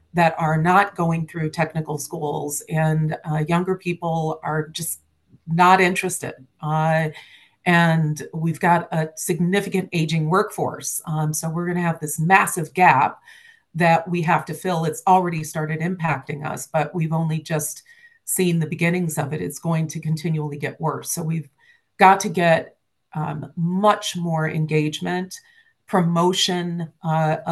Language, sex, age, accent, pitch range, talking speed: English, female, 40-59, American, 155-180 Hz, 145 wpm